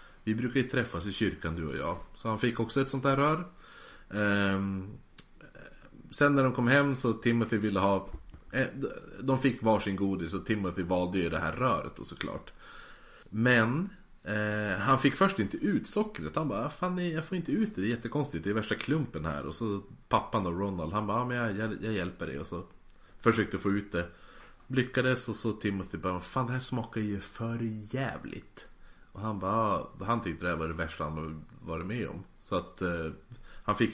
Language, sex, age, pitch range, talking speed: Swedish, male, 30-49, 85-115 Hz, 205 wpm